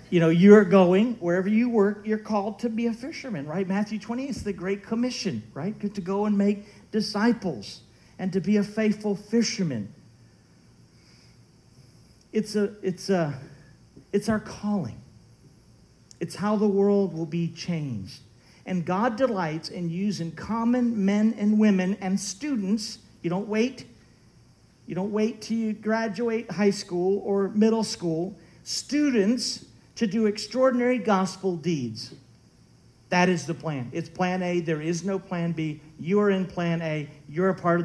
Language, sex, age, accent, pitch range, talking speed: English, male, 50-69, American, 175-220 Hz, 150 wpm